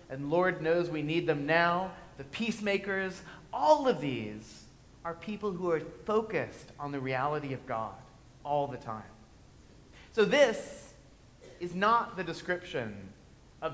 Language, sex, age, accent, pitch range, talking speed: English, male, 30-49, American, 135-185 Hz, 140 wpm